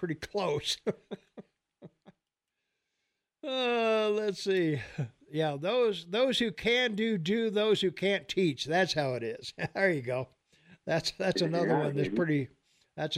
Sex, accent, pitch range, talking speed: male, American, 155-200 Hz, 135 wpm